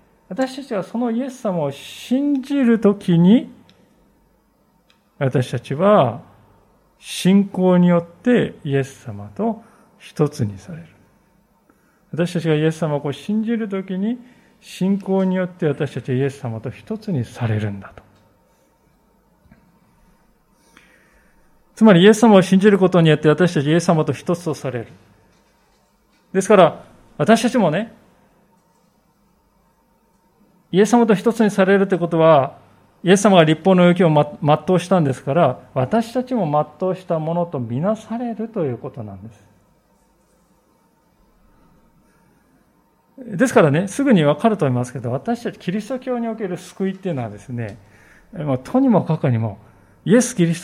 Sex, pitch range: male, 135-210 Hz